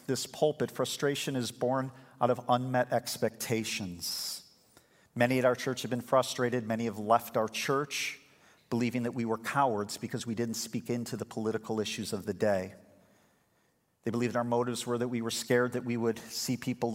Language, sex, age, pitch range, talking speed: English, male, 40-59, 110-125 Hz, 180 wpm